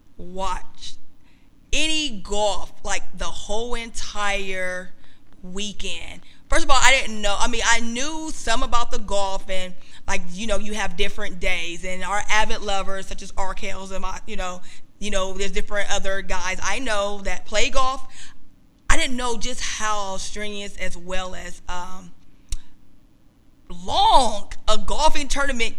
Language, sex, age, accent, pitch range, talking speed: English, female, 20-39, American, 190-235 Hz, 155 wpm